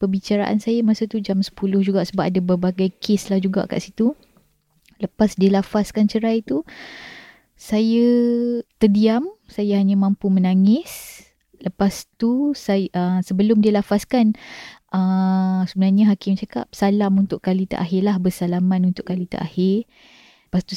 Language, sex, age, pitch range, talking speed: Malay, female, 20-39, 190-240 Hz, 130 wpm